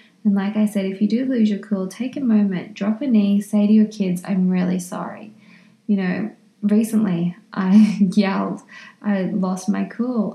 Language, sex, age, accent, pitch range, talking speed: English, female, 20-39, Australian, 195-215 Hz, 185 wpm